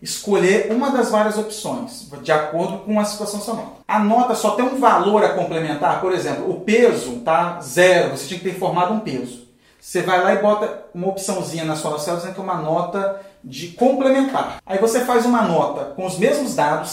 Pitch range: 170-235 Hz